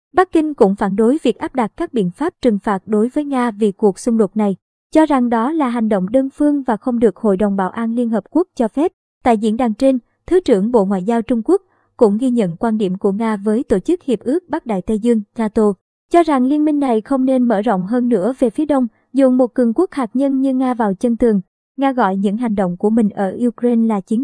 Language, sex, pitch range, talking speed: Vietnamese, male, 215-260 Hz, 260 wpm